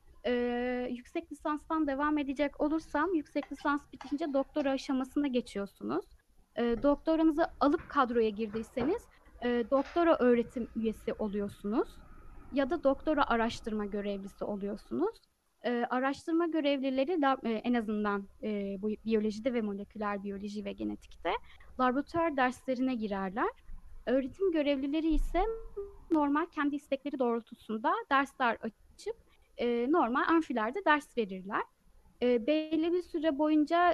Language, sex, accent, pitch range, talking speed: Turkish, female, native, 235-305 Hz, 110 wpm